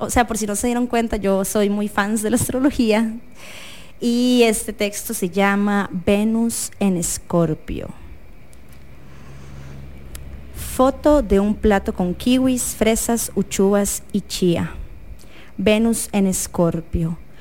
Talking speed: 125 wpm